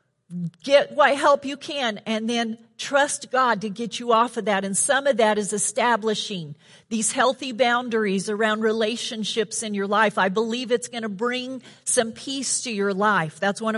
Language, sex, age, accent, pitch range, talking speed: English, female, 50-69, American, 220-290 Hz, 185 wpm